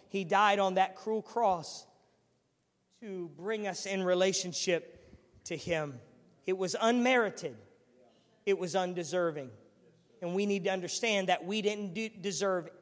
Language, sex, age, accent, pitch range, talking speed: English, male, 40-59, American, 195-260 Hz, 130 wpm